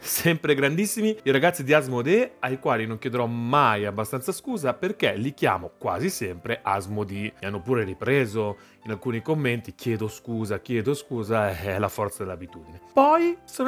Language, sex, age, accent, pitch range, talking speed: Italian, male, 30-49, native, 115-155 Hz, 160 wpm